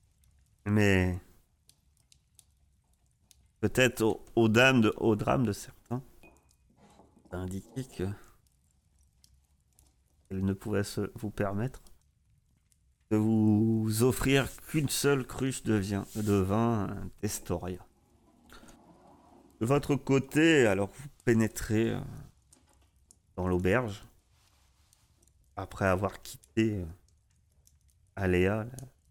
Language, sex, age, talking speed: French, male, 40-59, 85 wpm